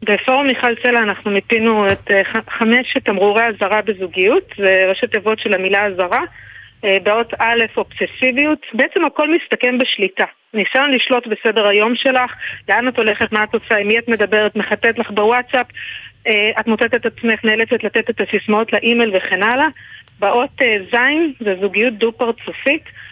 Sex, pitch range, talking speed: female, 210-250 Hz, 160 wpm